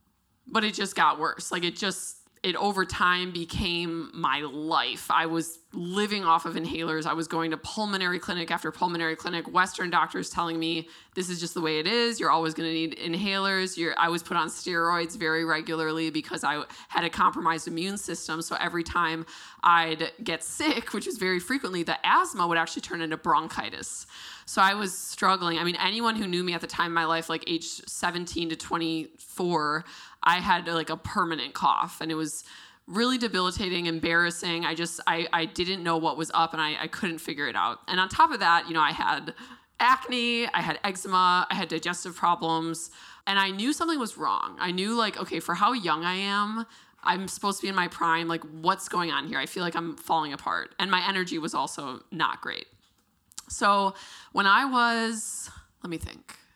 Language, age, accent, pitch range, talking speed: English, 20-39, American, 165-195 Hz, 200 wpm